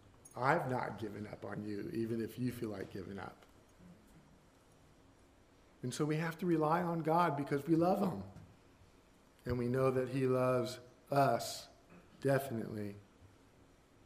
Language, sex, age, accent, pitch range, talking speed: English, male, 50-69, American, 110-175 Hz, 140 wpm